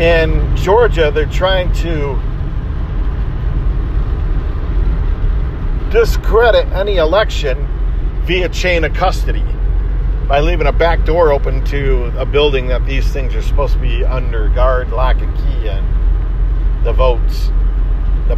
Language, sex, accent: English, male, American